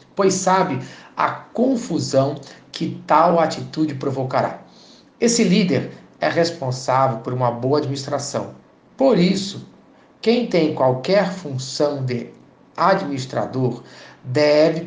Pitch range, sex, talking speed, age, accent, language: 135-180 Hz, male, 100 wpm, 50-69, Brazilian, Portuguese